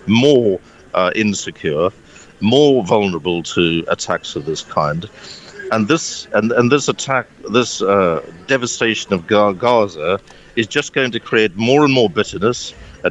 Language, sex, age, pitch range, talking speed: English, male, 50-69, 90-115 Hz, 145 wpm